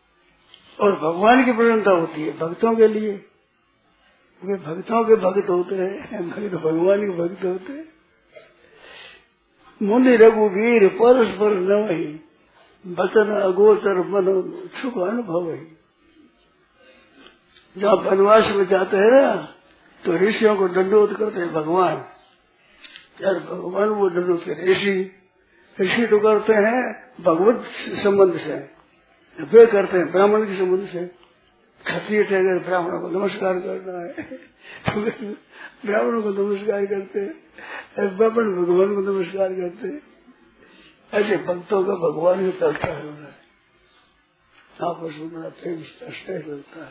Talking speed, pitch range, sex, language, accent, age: 115 wpm, 180-215 Hz, male, Hindi, native, 50-69